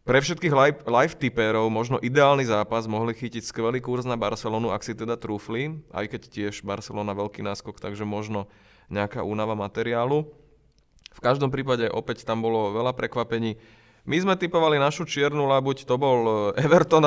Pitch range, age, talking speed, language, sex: 110-130 Hz, 20-39, 155 wpm, Slovak, male